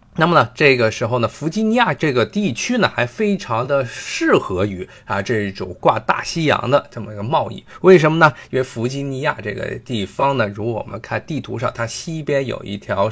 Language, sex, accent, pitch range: Chinese, male, native, 110-160 Hz